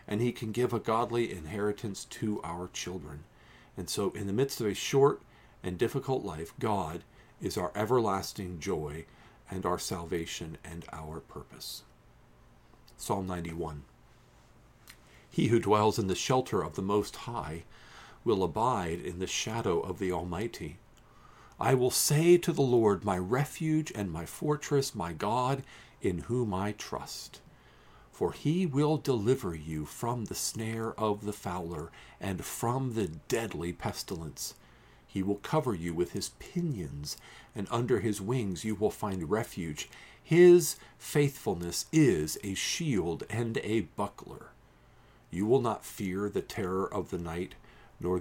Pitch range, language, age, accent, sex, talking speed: 90-125 Hz, English, 50-69, American, male, 145 wpm